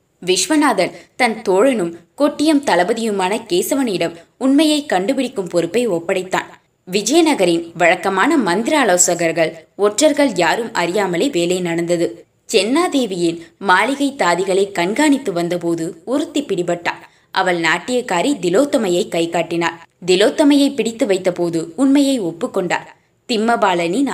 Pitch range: 175-260 Hz